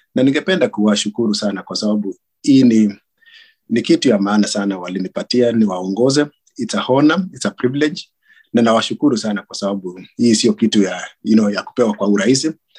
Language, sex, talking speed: Swahili, male, 170 wpm